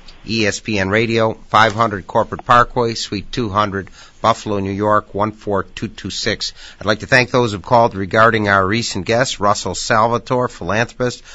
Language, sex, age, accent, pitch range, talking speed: English, male, 50-69, American, 100-120 Hz, 140 wpm